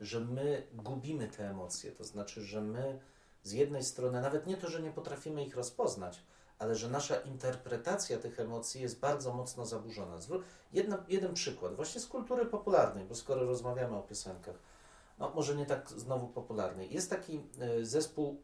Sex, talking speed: male, 170 wpm